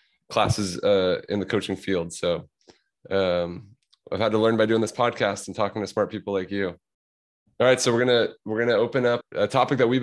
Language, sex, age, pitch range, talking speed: English, male, 20-39, 95-110 Hz, 215 wpm